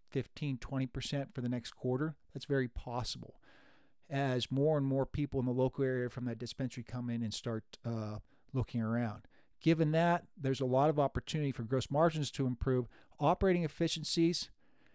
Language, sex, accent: English, male, American